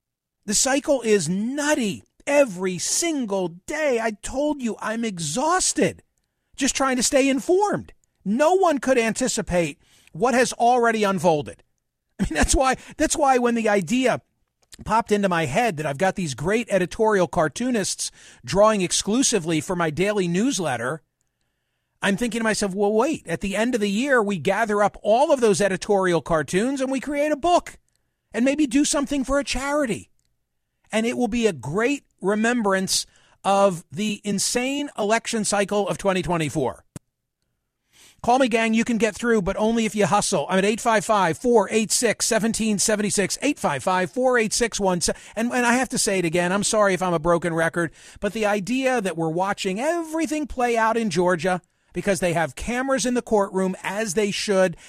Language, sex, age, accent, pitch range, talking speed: English, male, 50-69, American, 185-245 Hz, 160 wpm